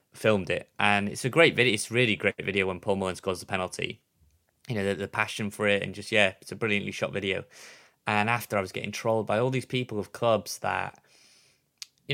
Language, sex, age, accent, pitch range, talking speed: English, male, 20-39, British, 105-120 Hz, 225 wpm